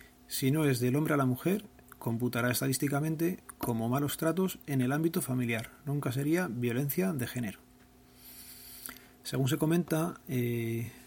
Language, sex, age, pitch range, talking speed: Spanish, male, 40-59, 120-145 Hz, 140 wpm